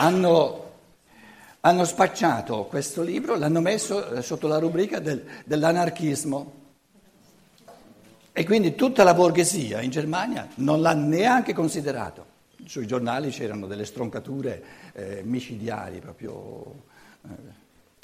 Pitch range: 120-165 Hz